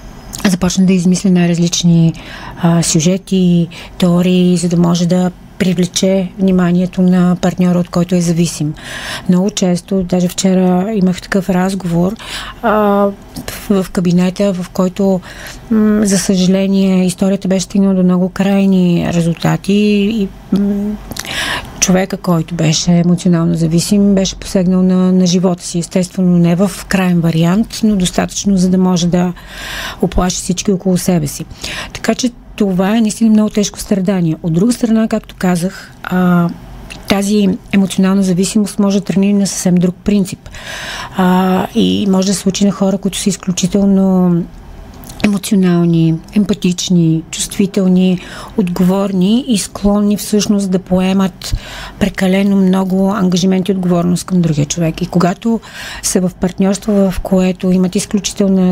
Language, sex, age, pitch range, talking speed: Bulgarian, female, 30-49, 175-200 Hz, 135 wpm